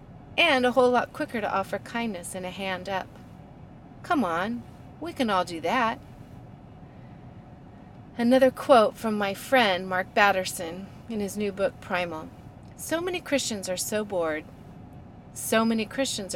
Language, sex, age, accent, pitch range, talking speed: English, female, 30-49, American, 180-250 Hz, 145 wpm